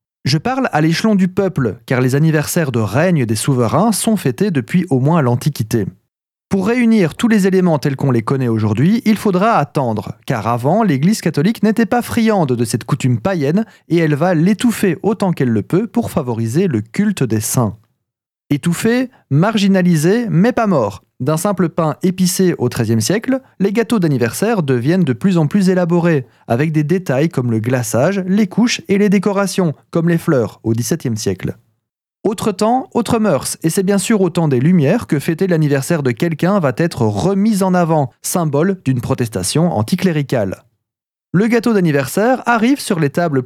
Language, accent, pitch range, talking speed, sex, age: French, French, 130-195 Hz, 175 wpm, male, 30-49